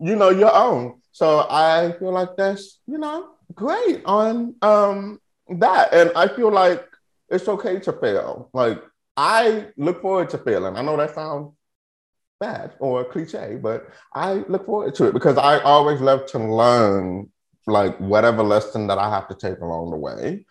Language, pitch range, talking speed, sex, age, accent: English, 125-200 Hz, 175 wpm, male, 30-49, American